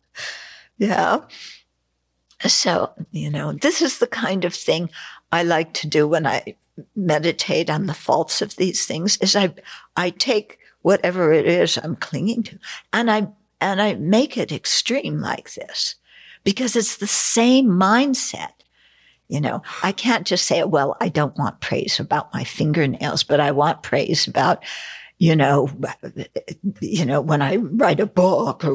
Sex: female